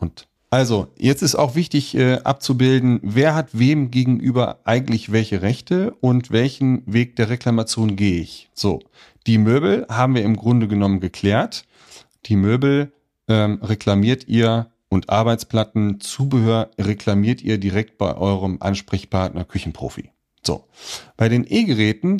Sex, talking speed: male, 130 wpm